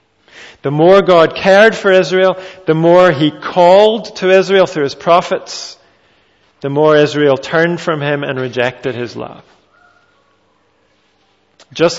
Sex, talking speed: male, 130 wpm